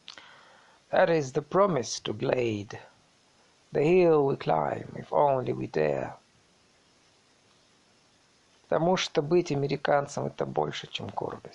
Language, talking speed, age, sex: Russian, 105 wpm, 50-69, male